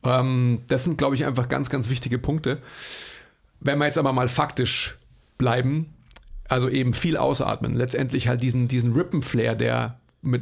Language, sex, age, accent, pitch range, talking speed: German, male, 40-59, German, 120-140 Hz, 155 wpm